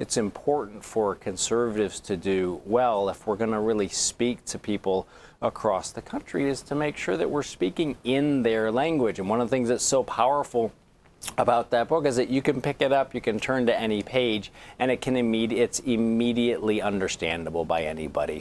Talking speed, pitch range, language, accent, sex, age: 200 wpm, 95-125 Hz, English, American, male, 40-59